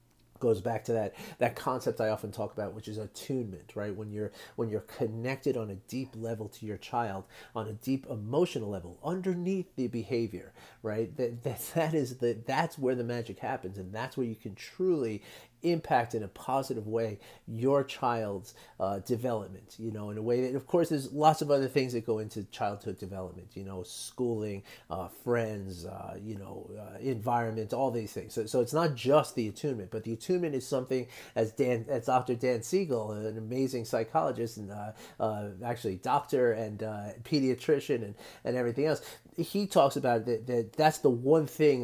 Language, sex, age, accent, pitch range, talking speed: English, male, 40-59, American, 105-130 Hz, 190 wpm